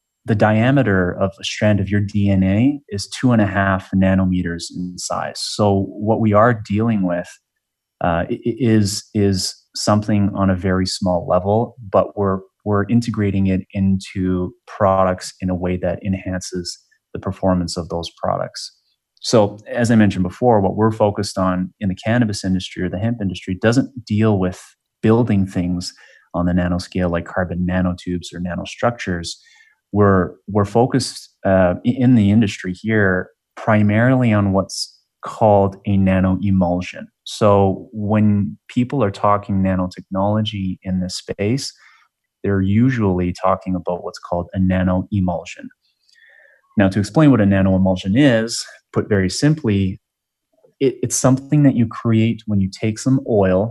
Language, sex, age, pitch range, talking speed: English, male, 30-49, 95-110 Hz, 150 wpm